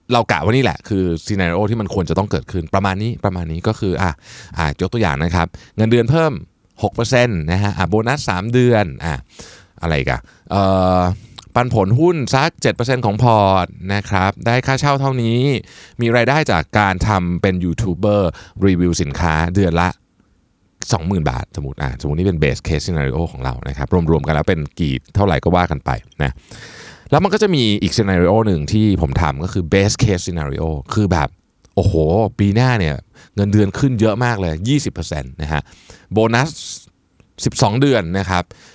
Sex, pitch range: male, 85-120 Hz